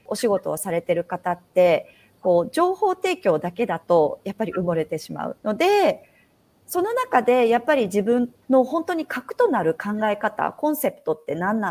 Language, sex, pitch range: Japanese, female, 195-290 Hz